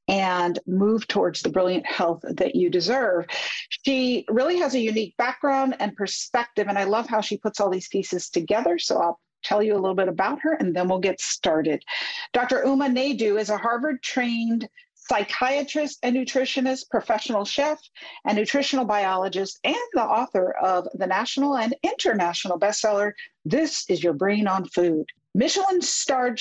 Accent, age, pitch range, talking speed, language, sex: American, 50-69, 195-275 Hz, 160 wpm, English, female